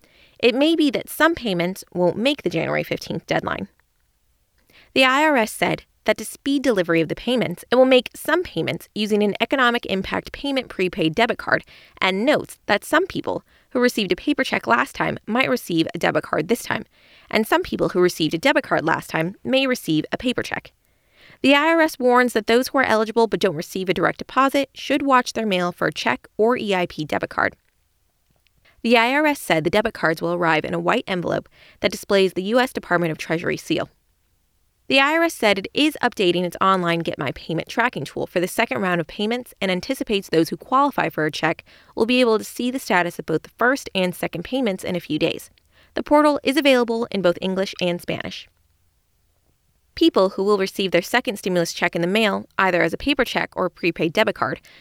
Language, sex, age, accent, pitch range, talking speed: English, female, 20-39, American, 175-250 Hz, 205 wpm